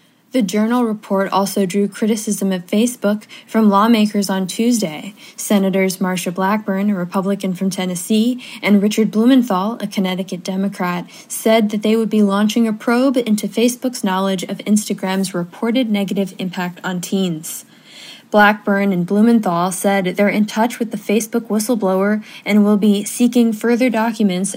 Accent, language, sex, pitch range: American, English, female, 195-230 Hz